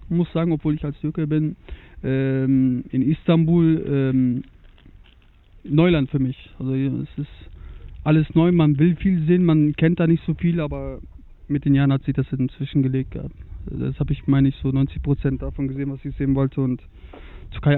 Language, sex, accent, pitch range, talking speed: German, male, German, 125-140 Hz, 190 wpm